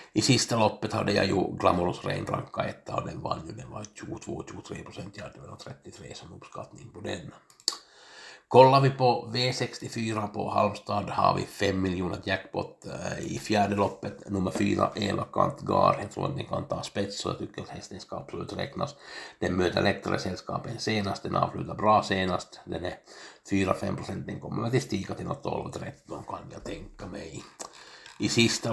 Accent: Finnish